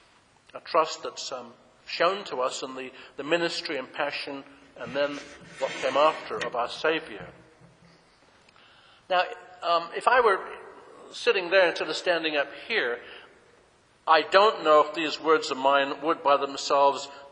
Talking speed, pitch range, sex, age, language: 155 wpm, 145-190 Hz, male, 60-79, English